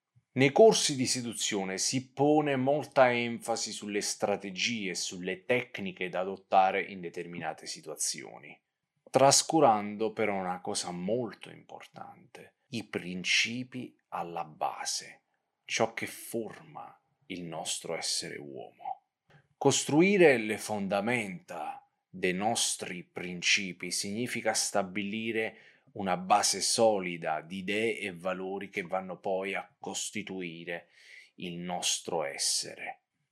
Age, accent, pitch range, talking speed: 30-49, native, 95-125 Hz, 105 wpm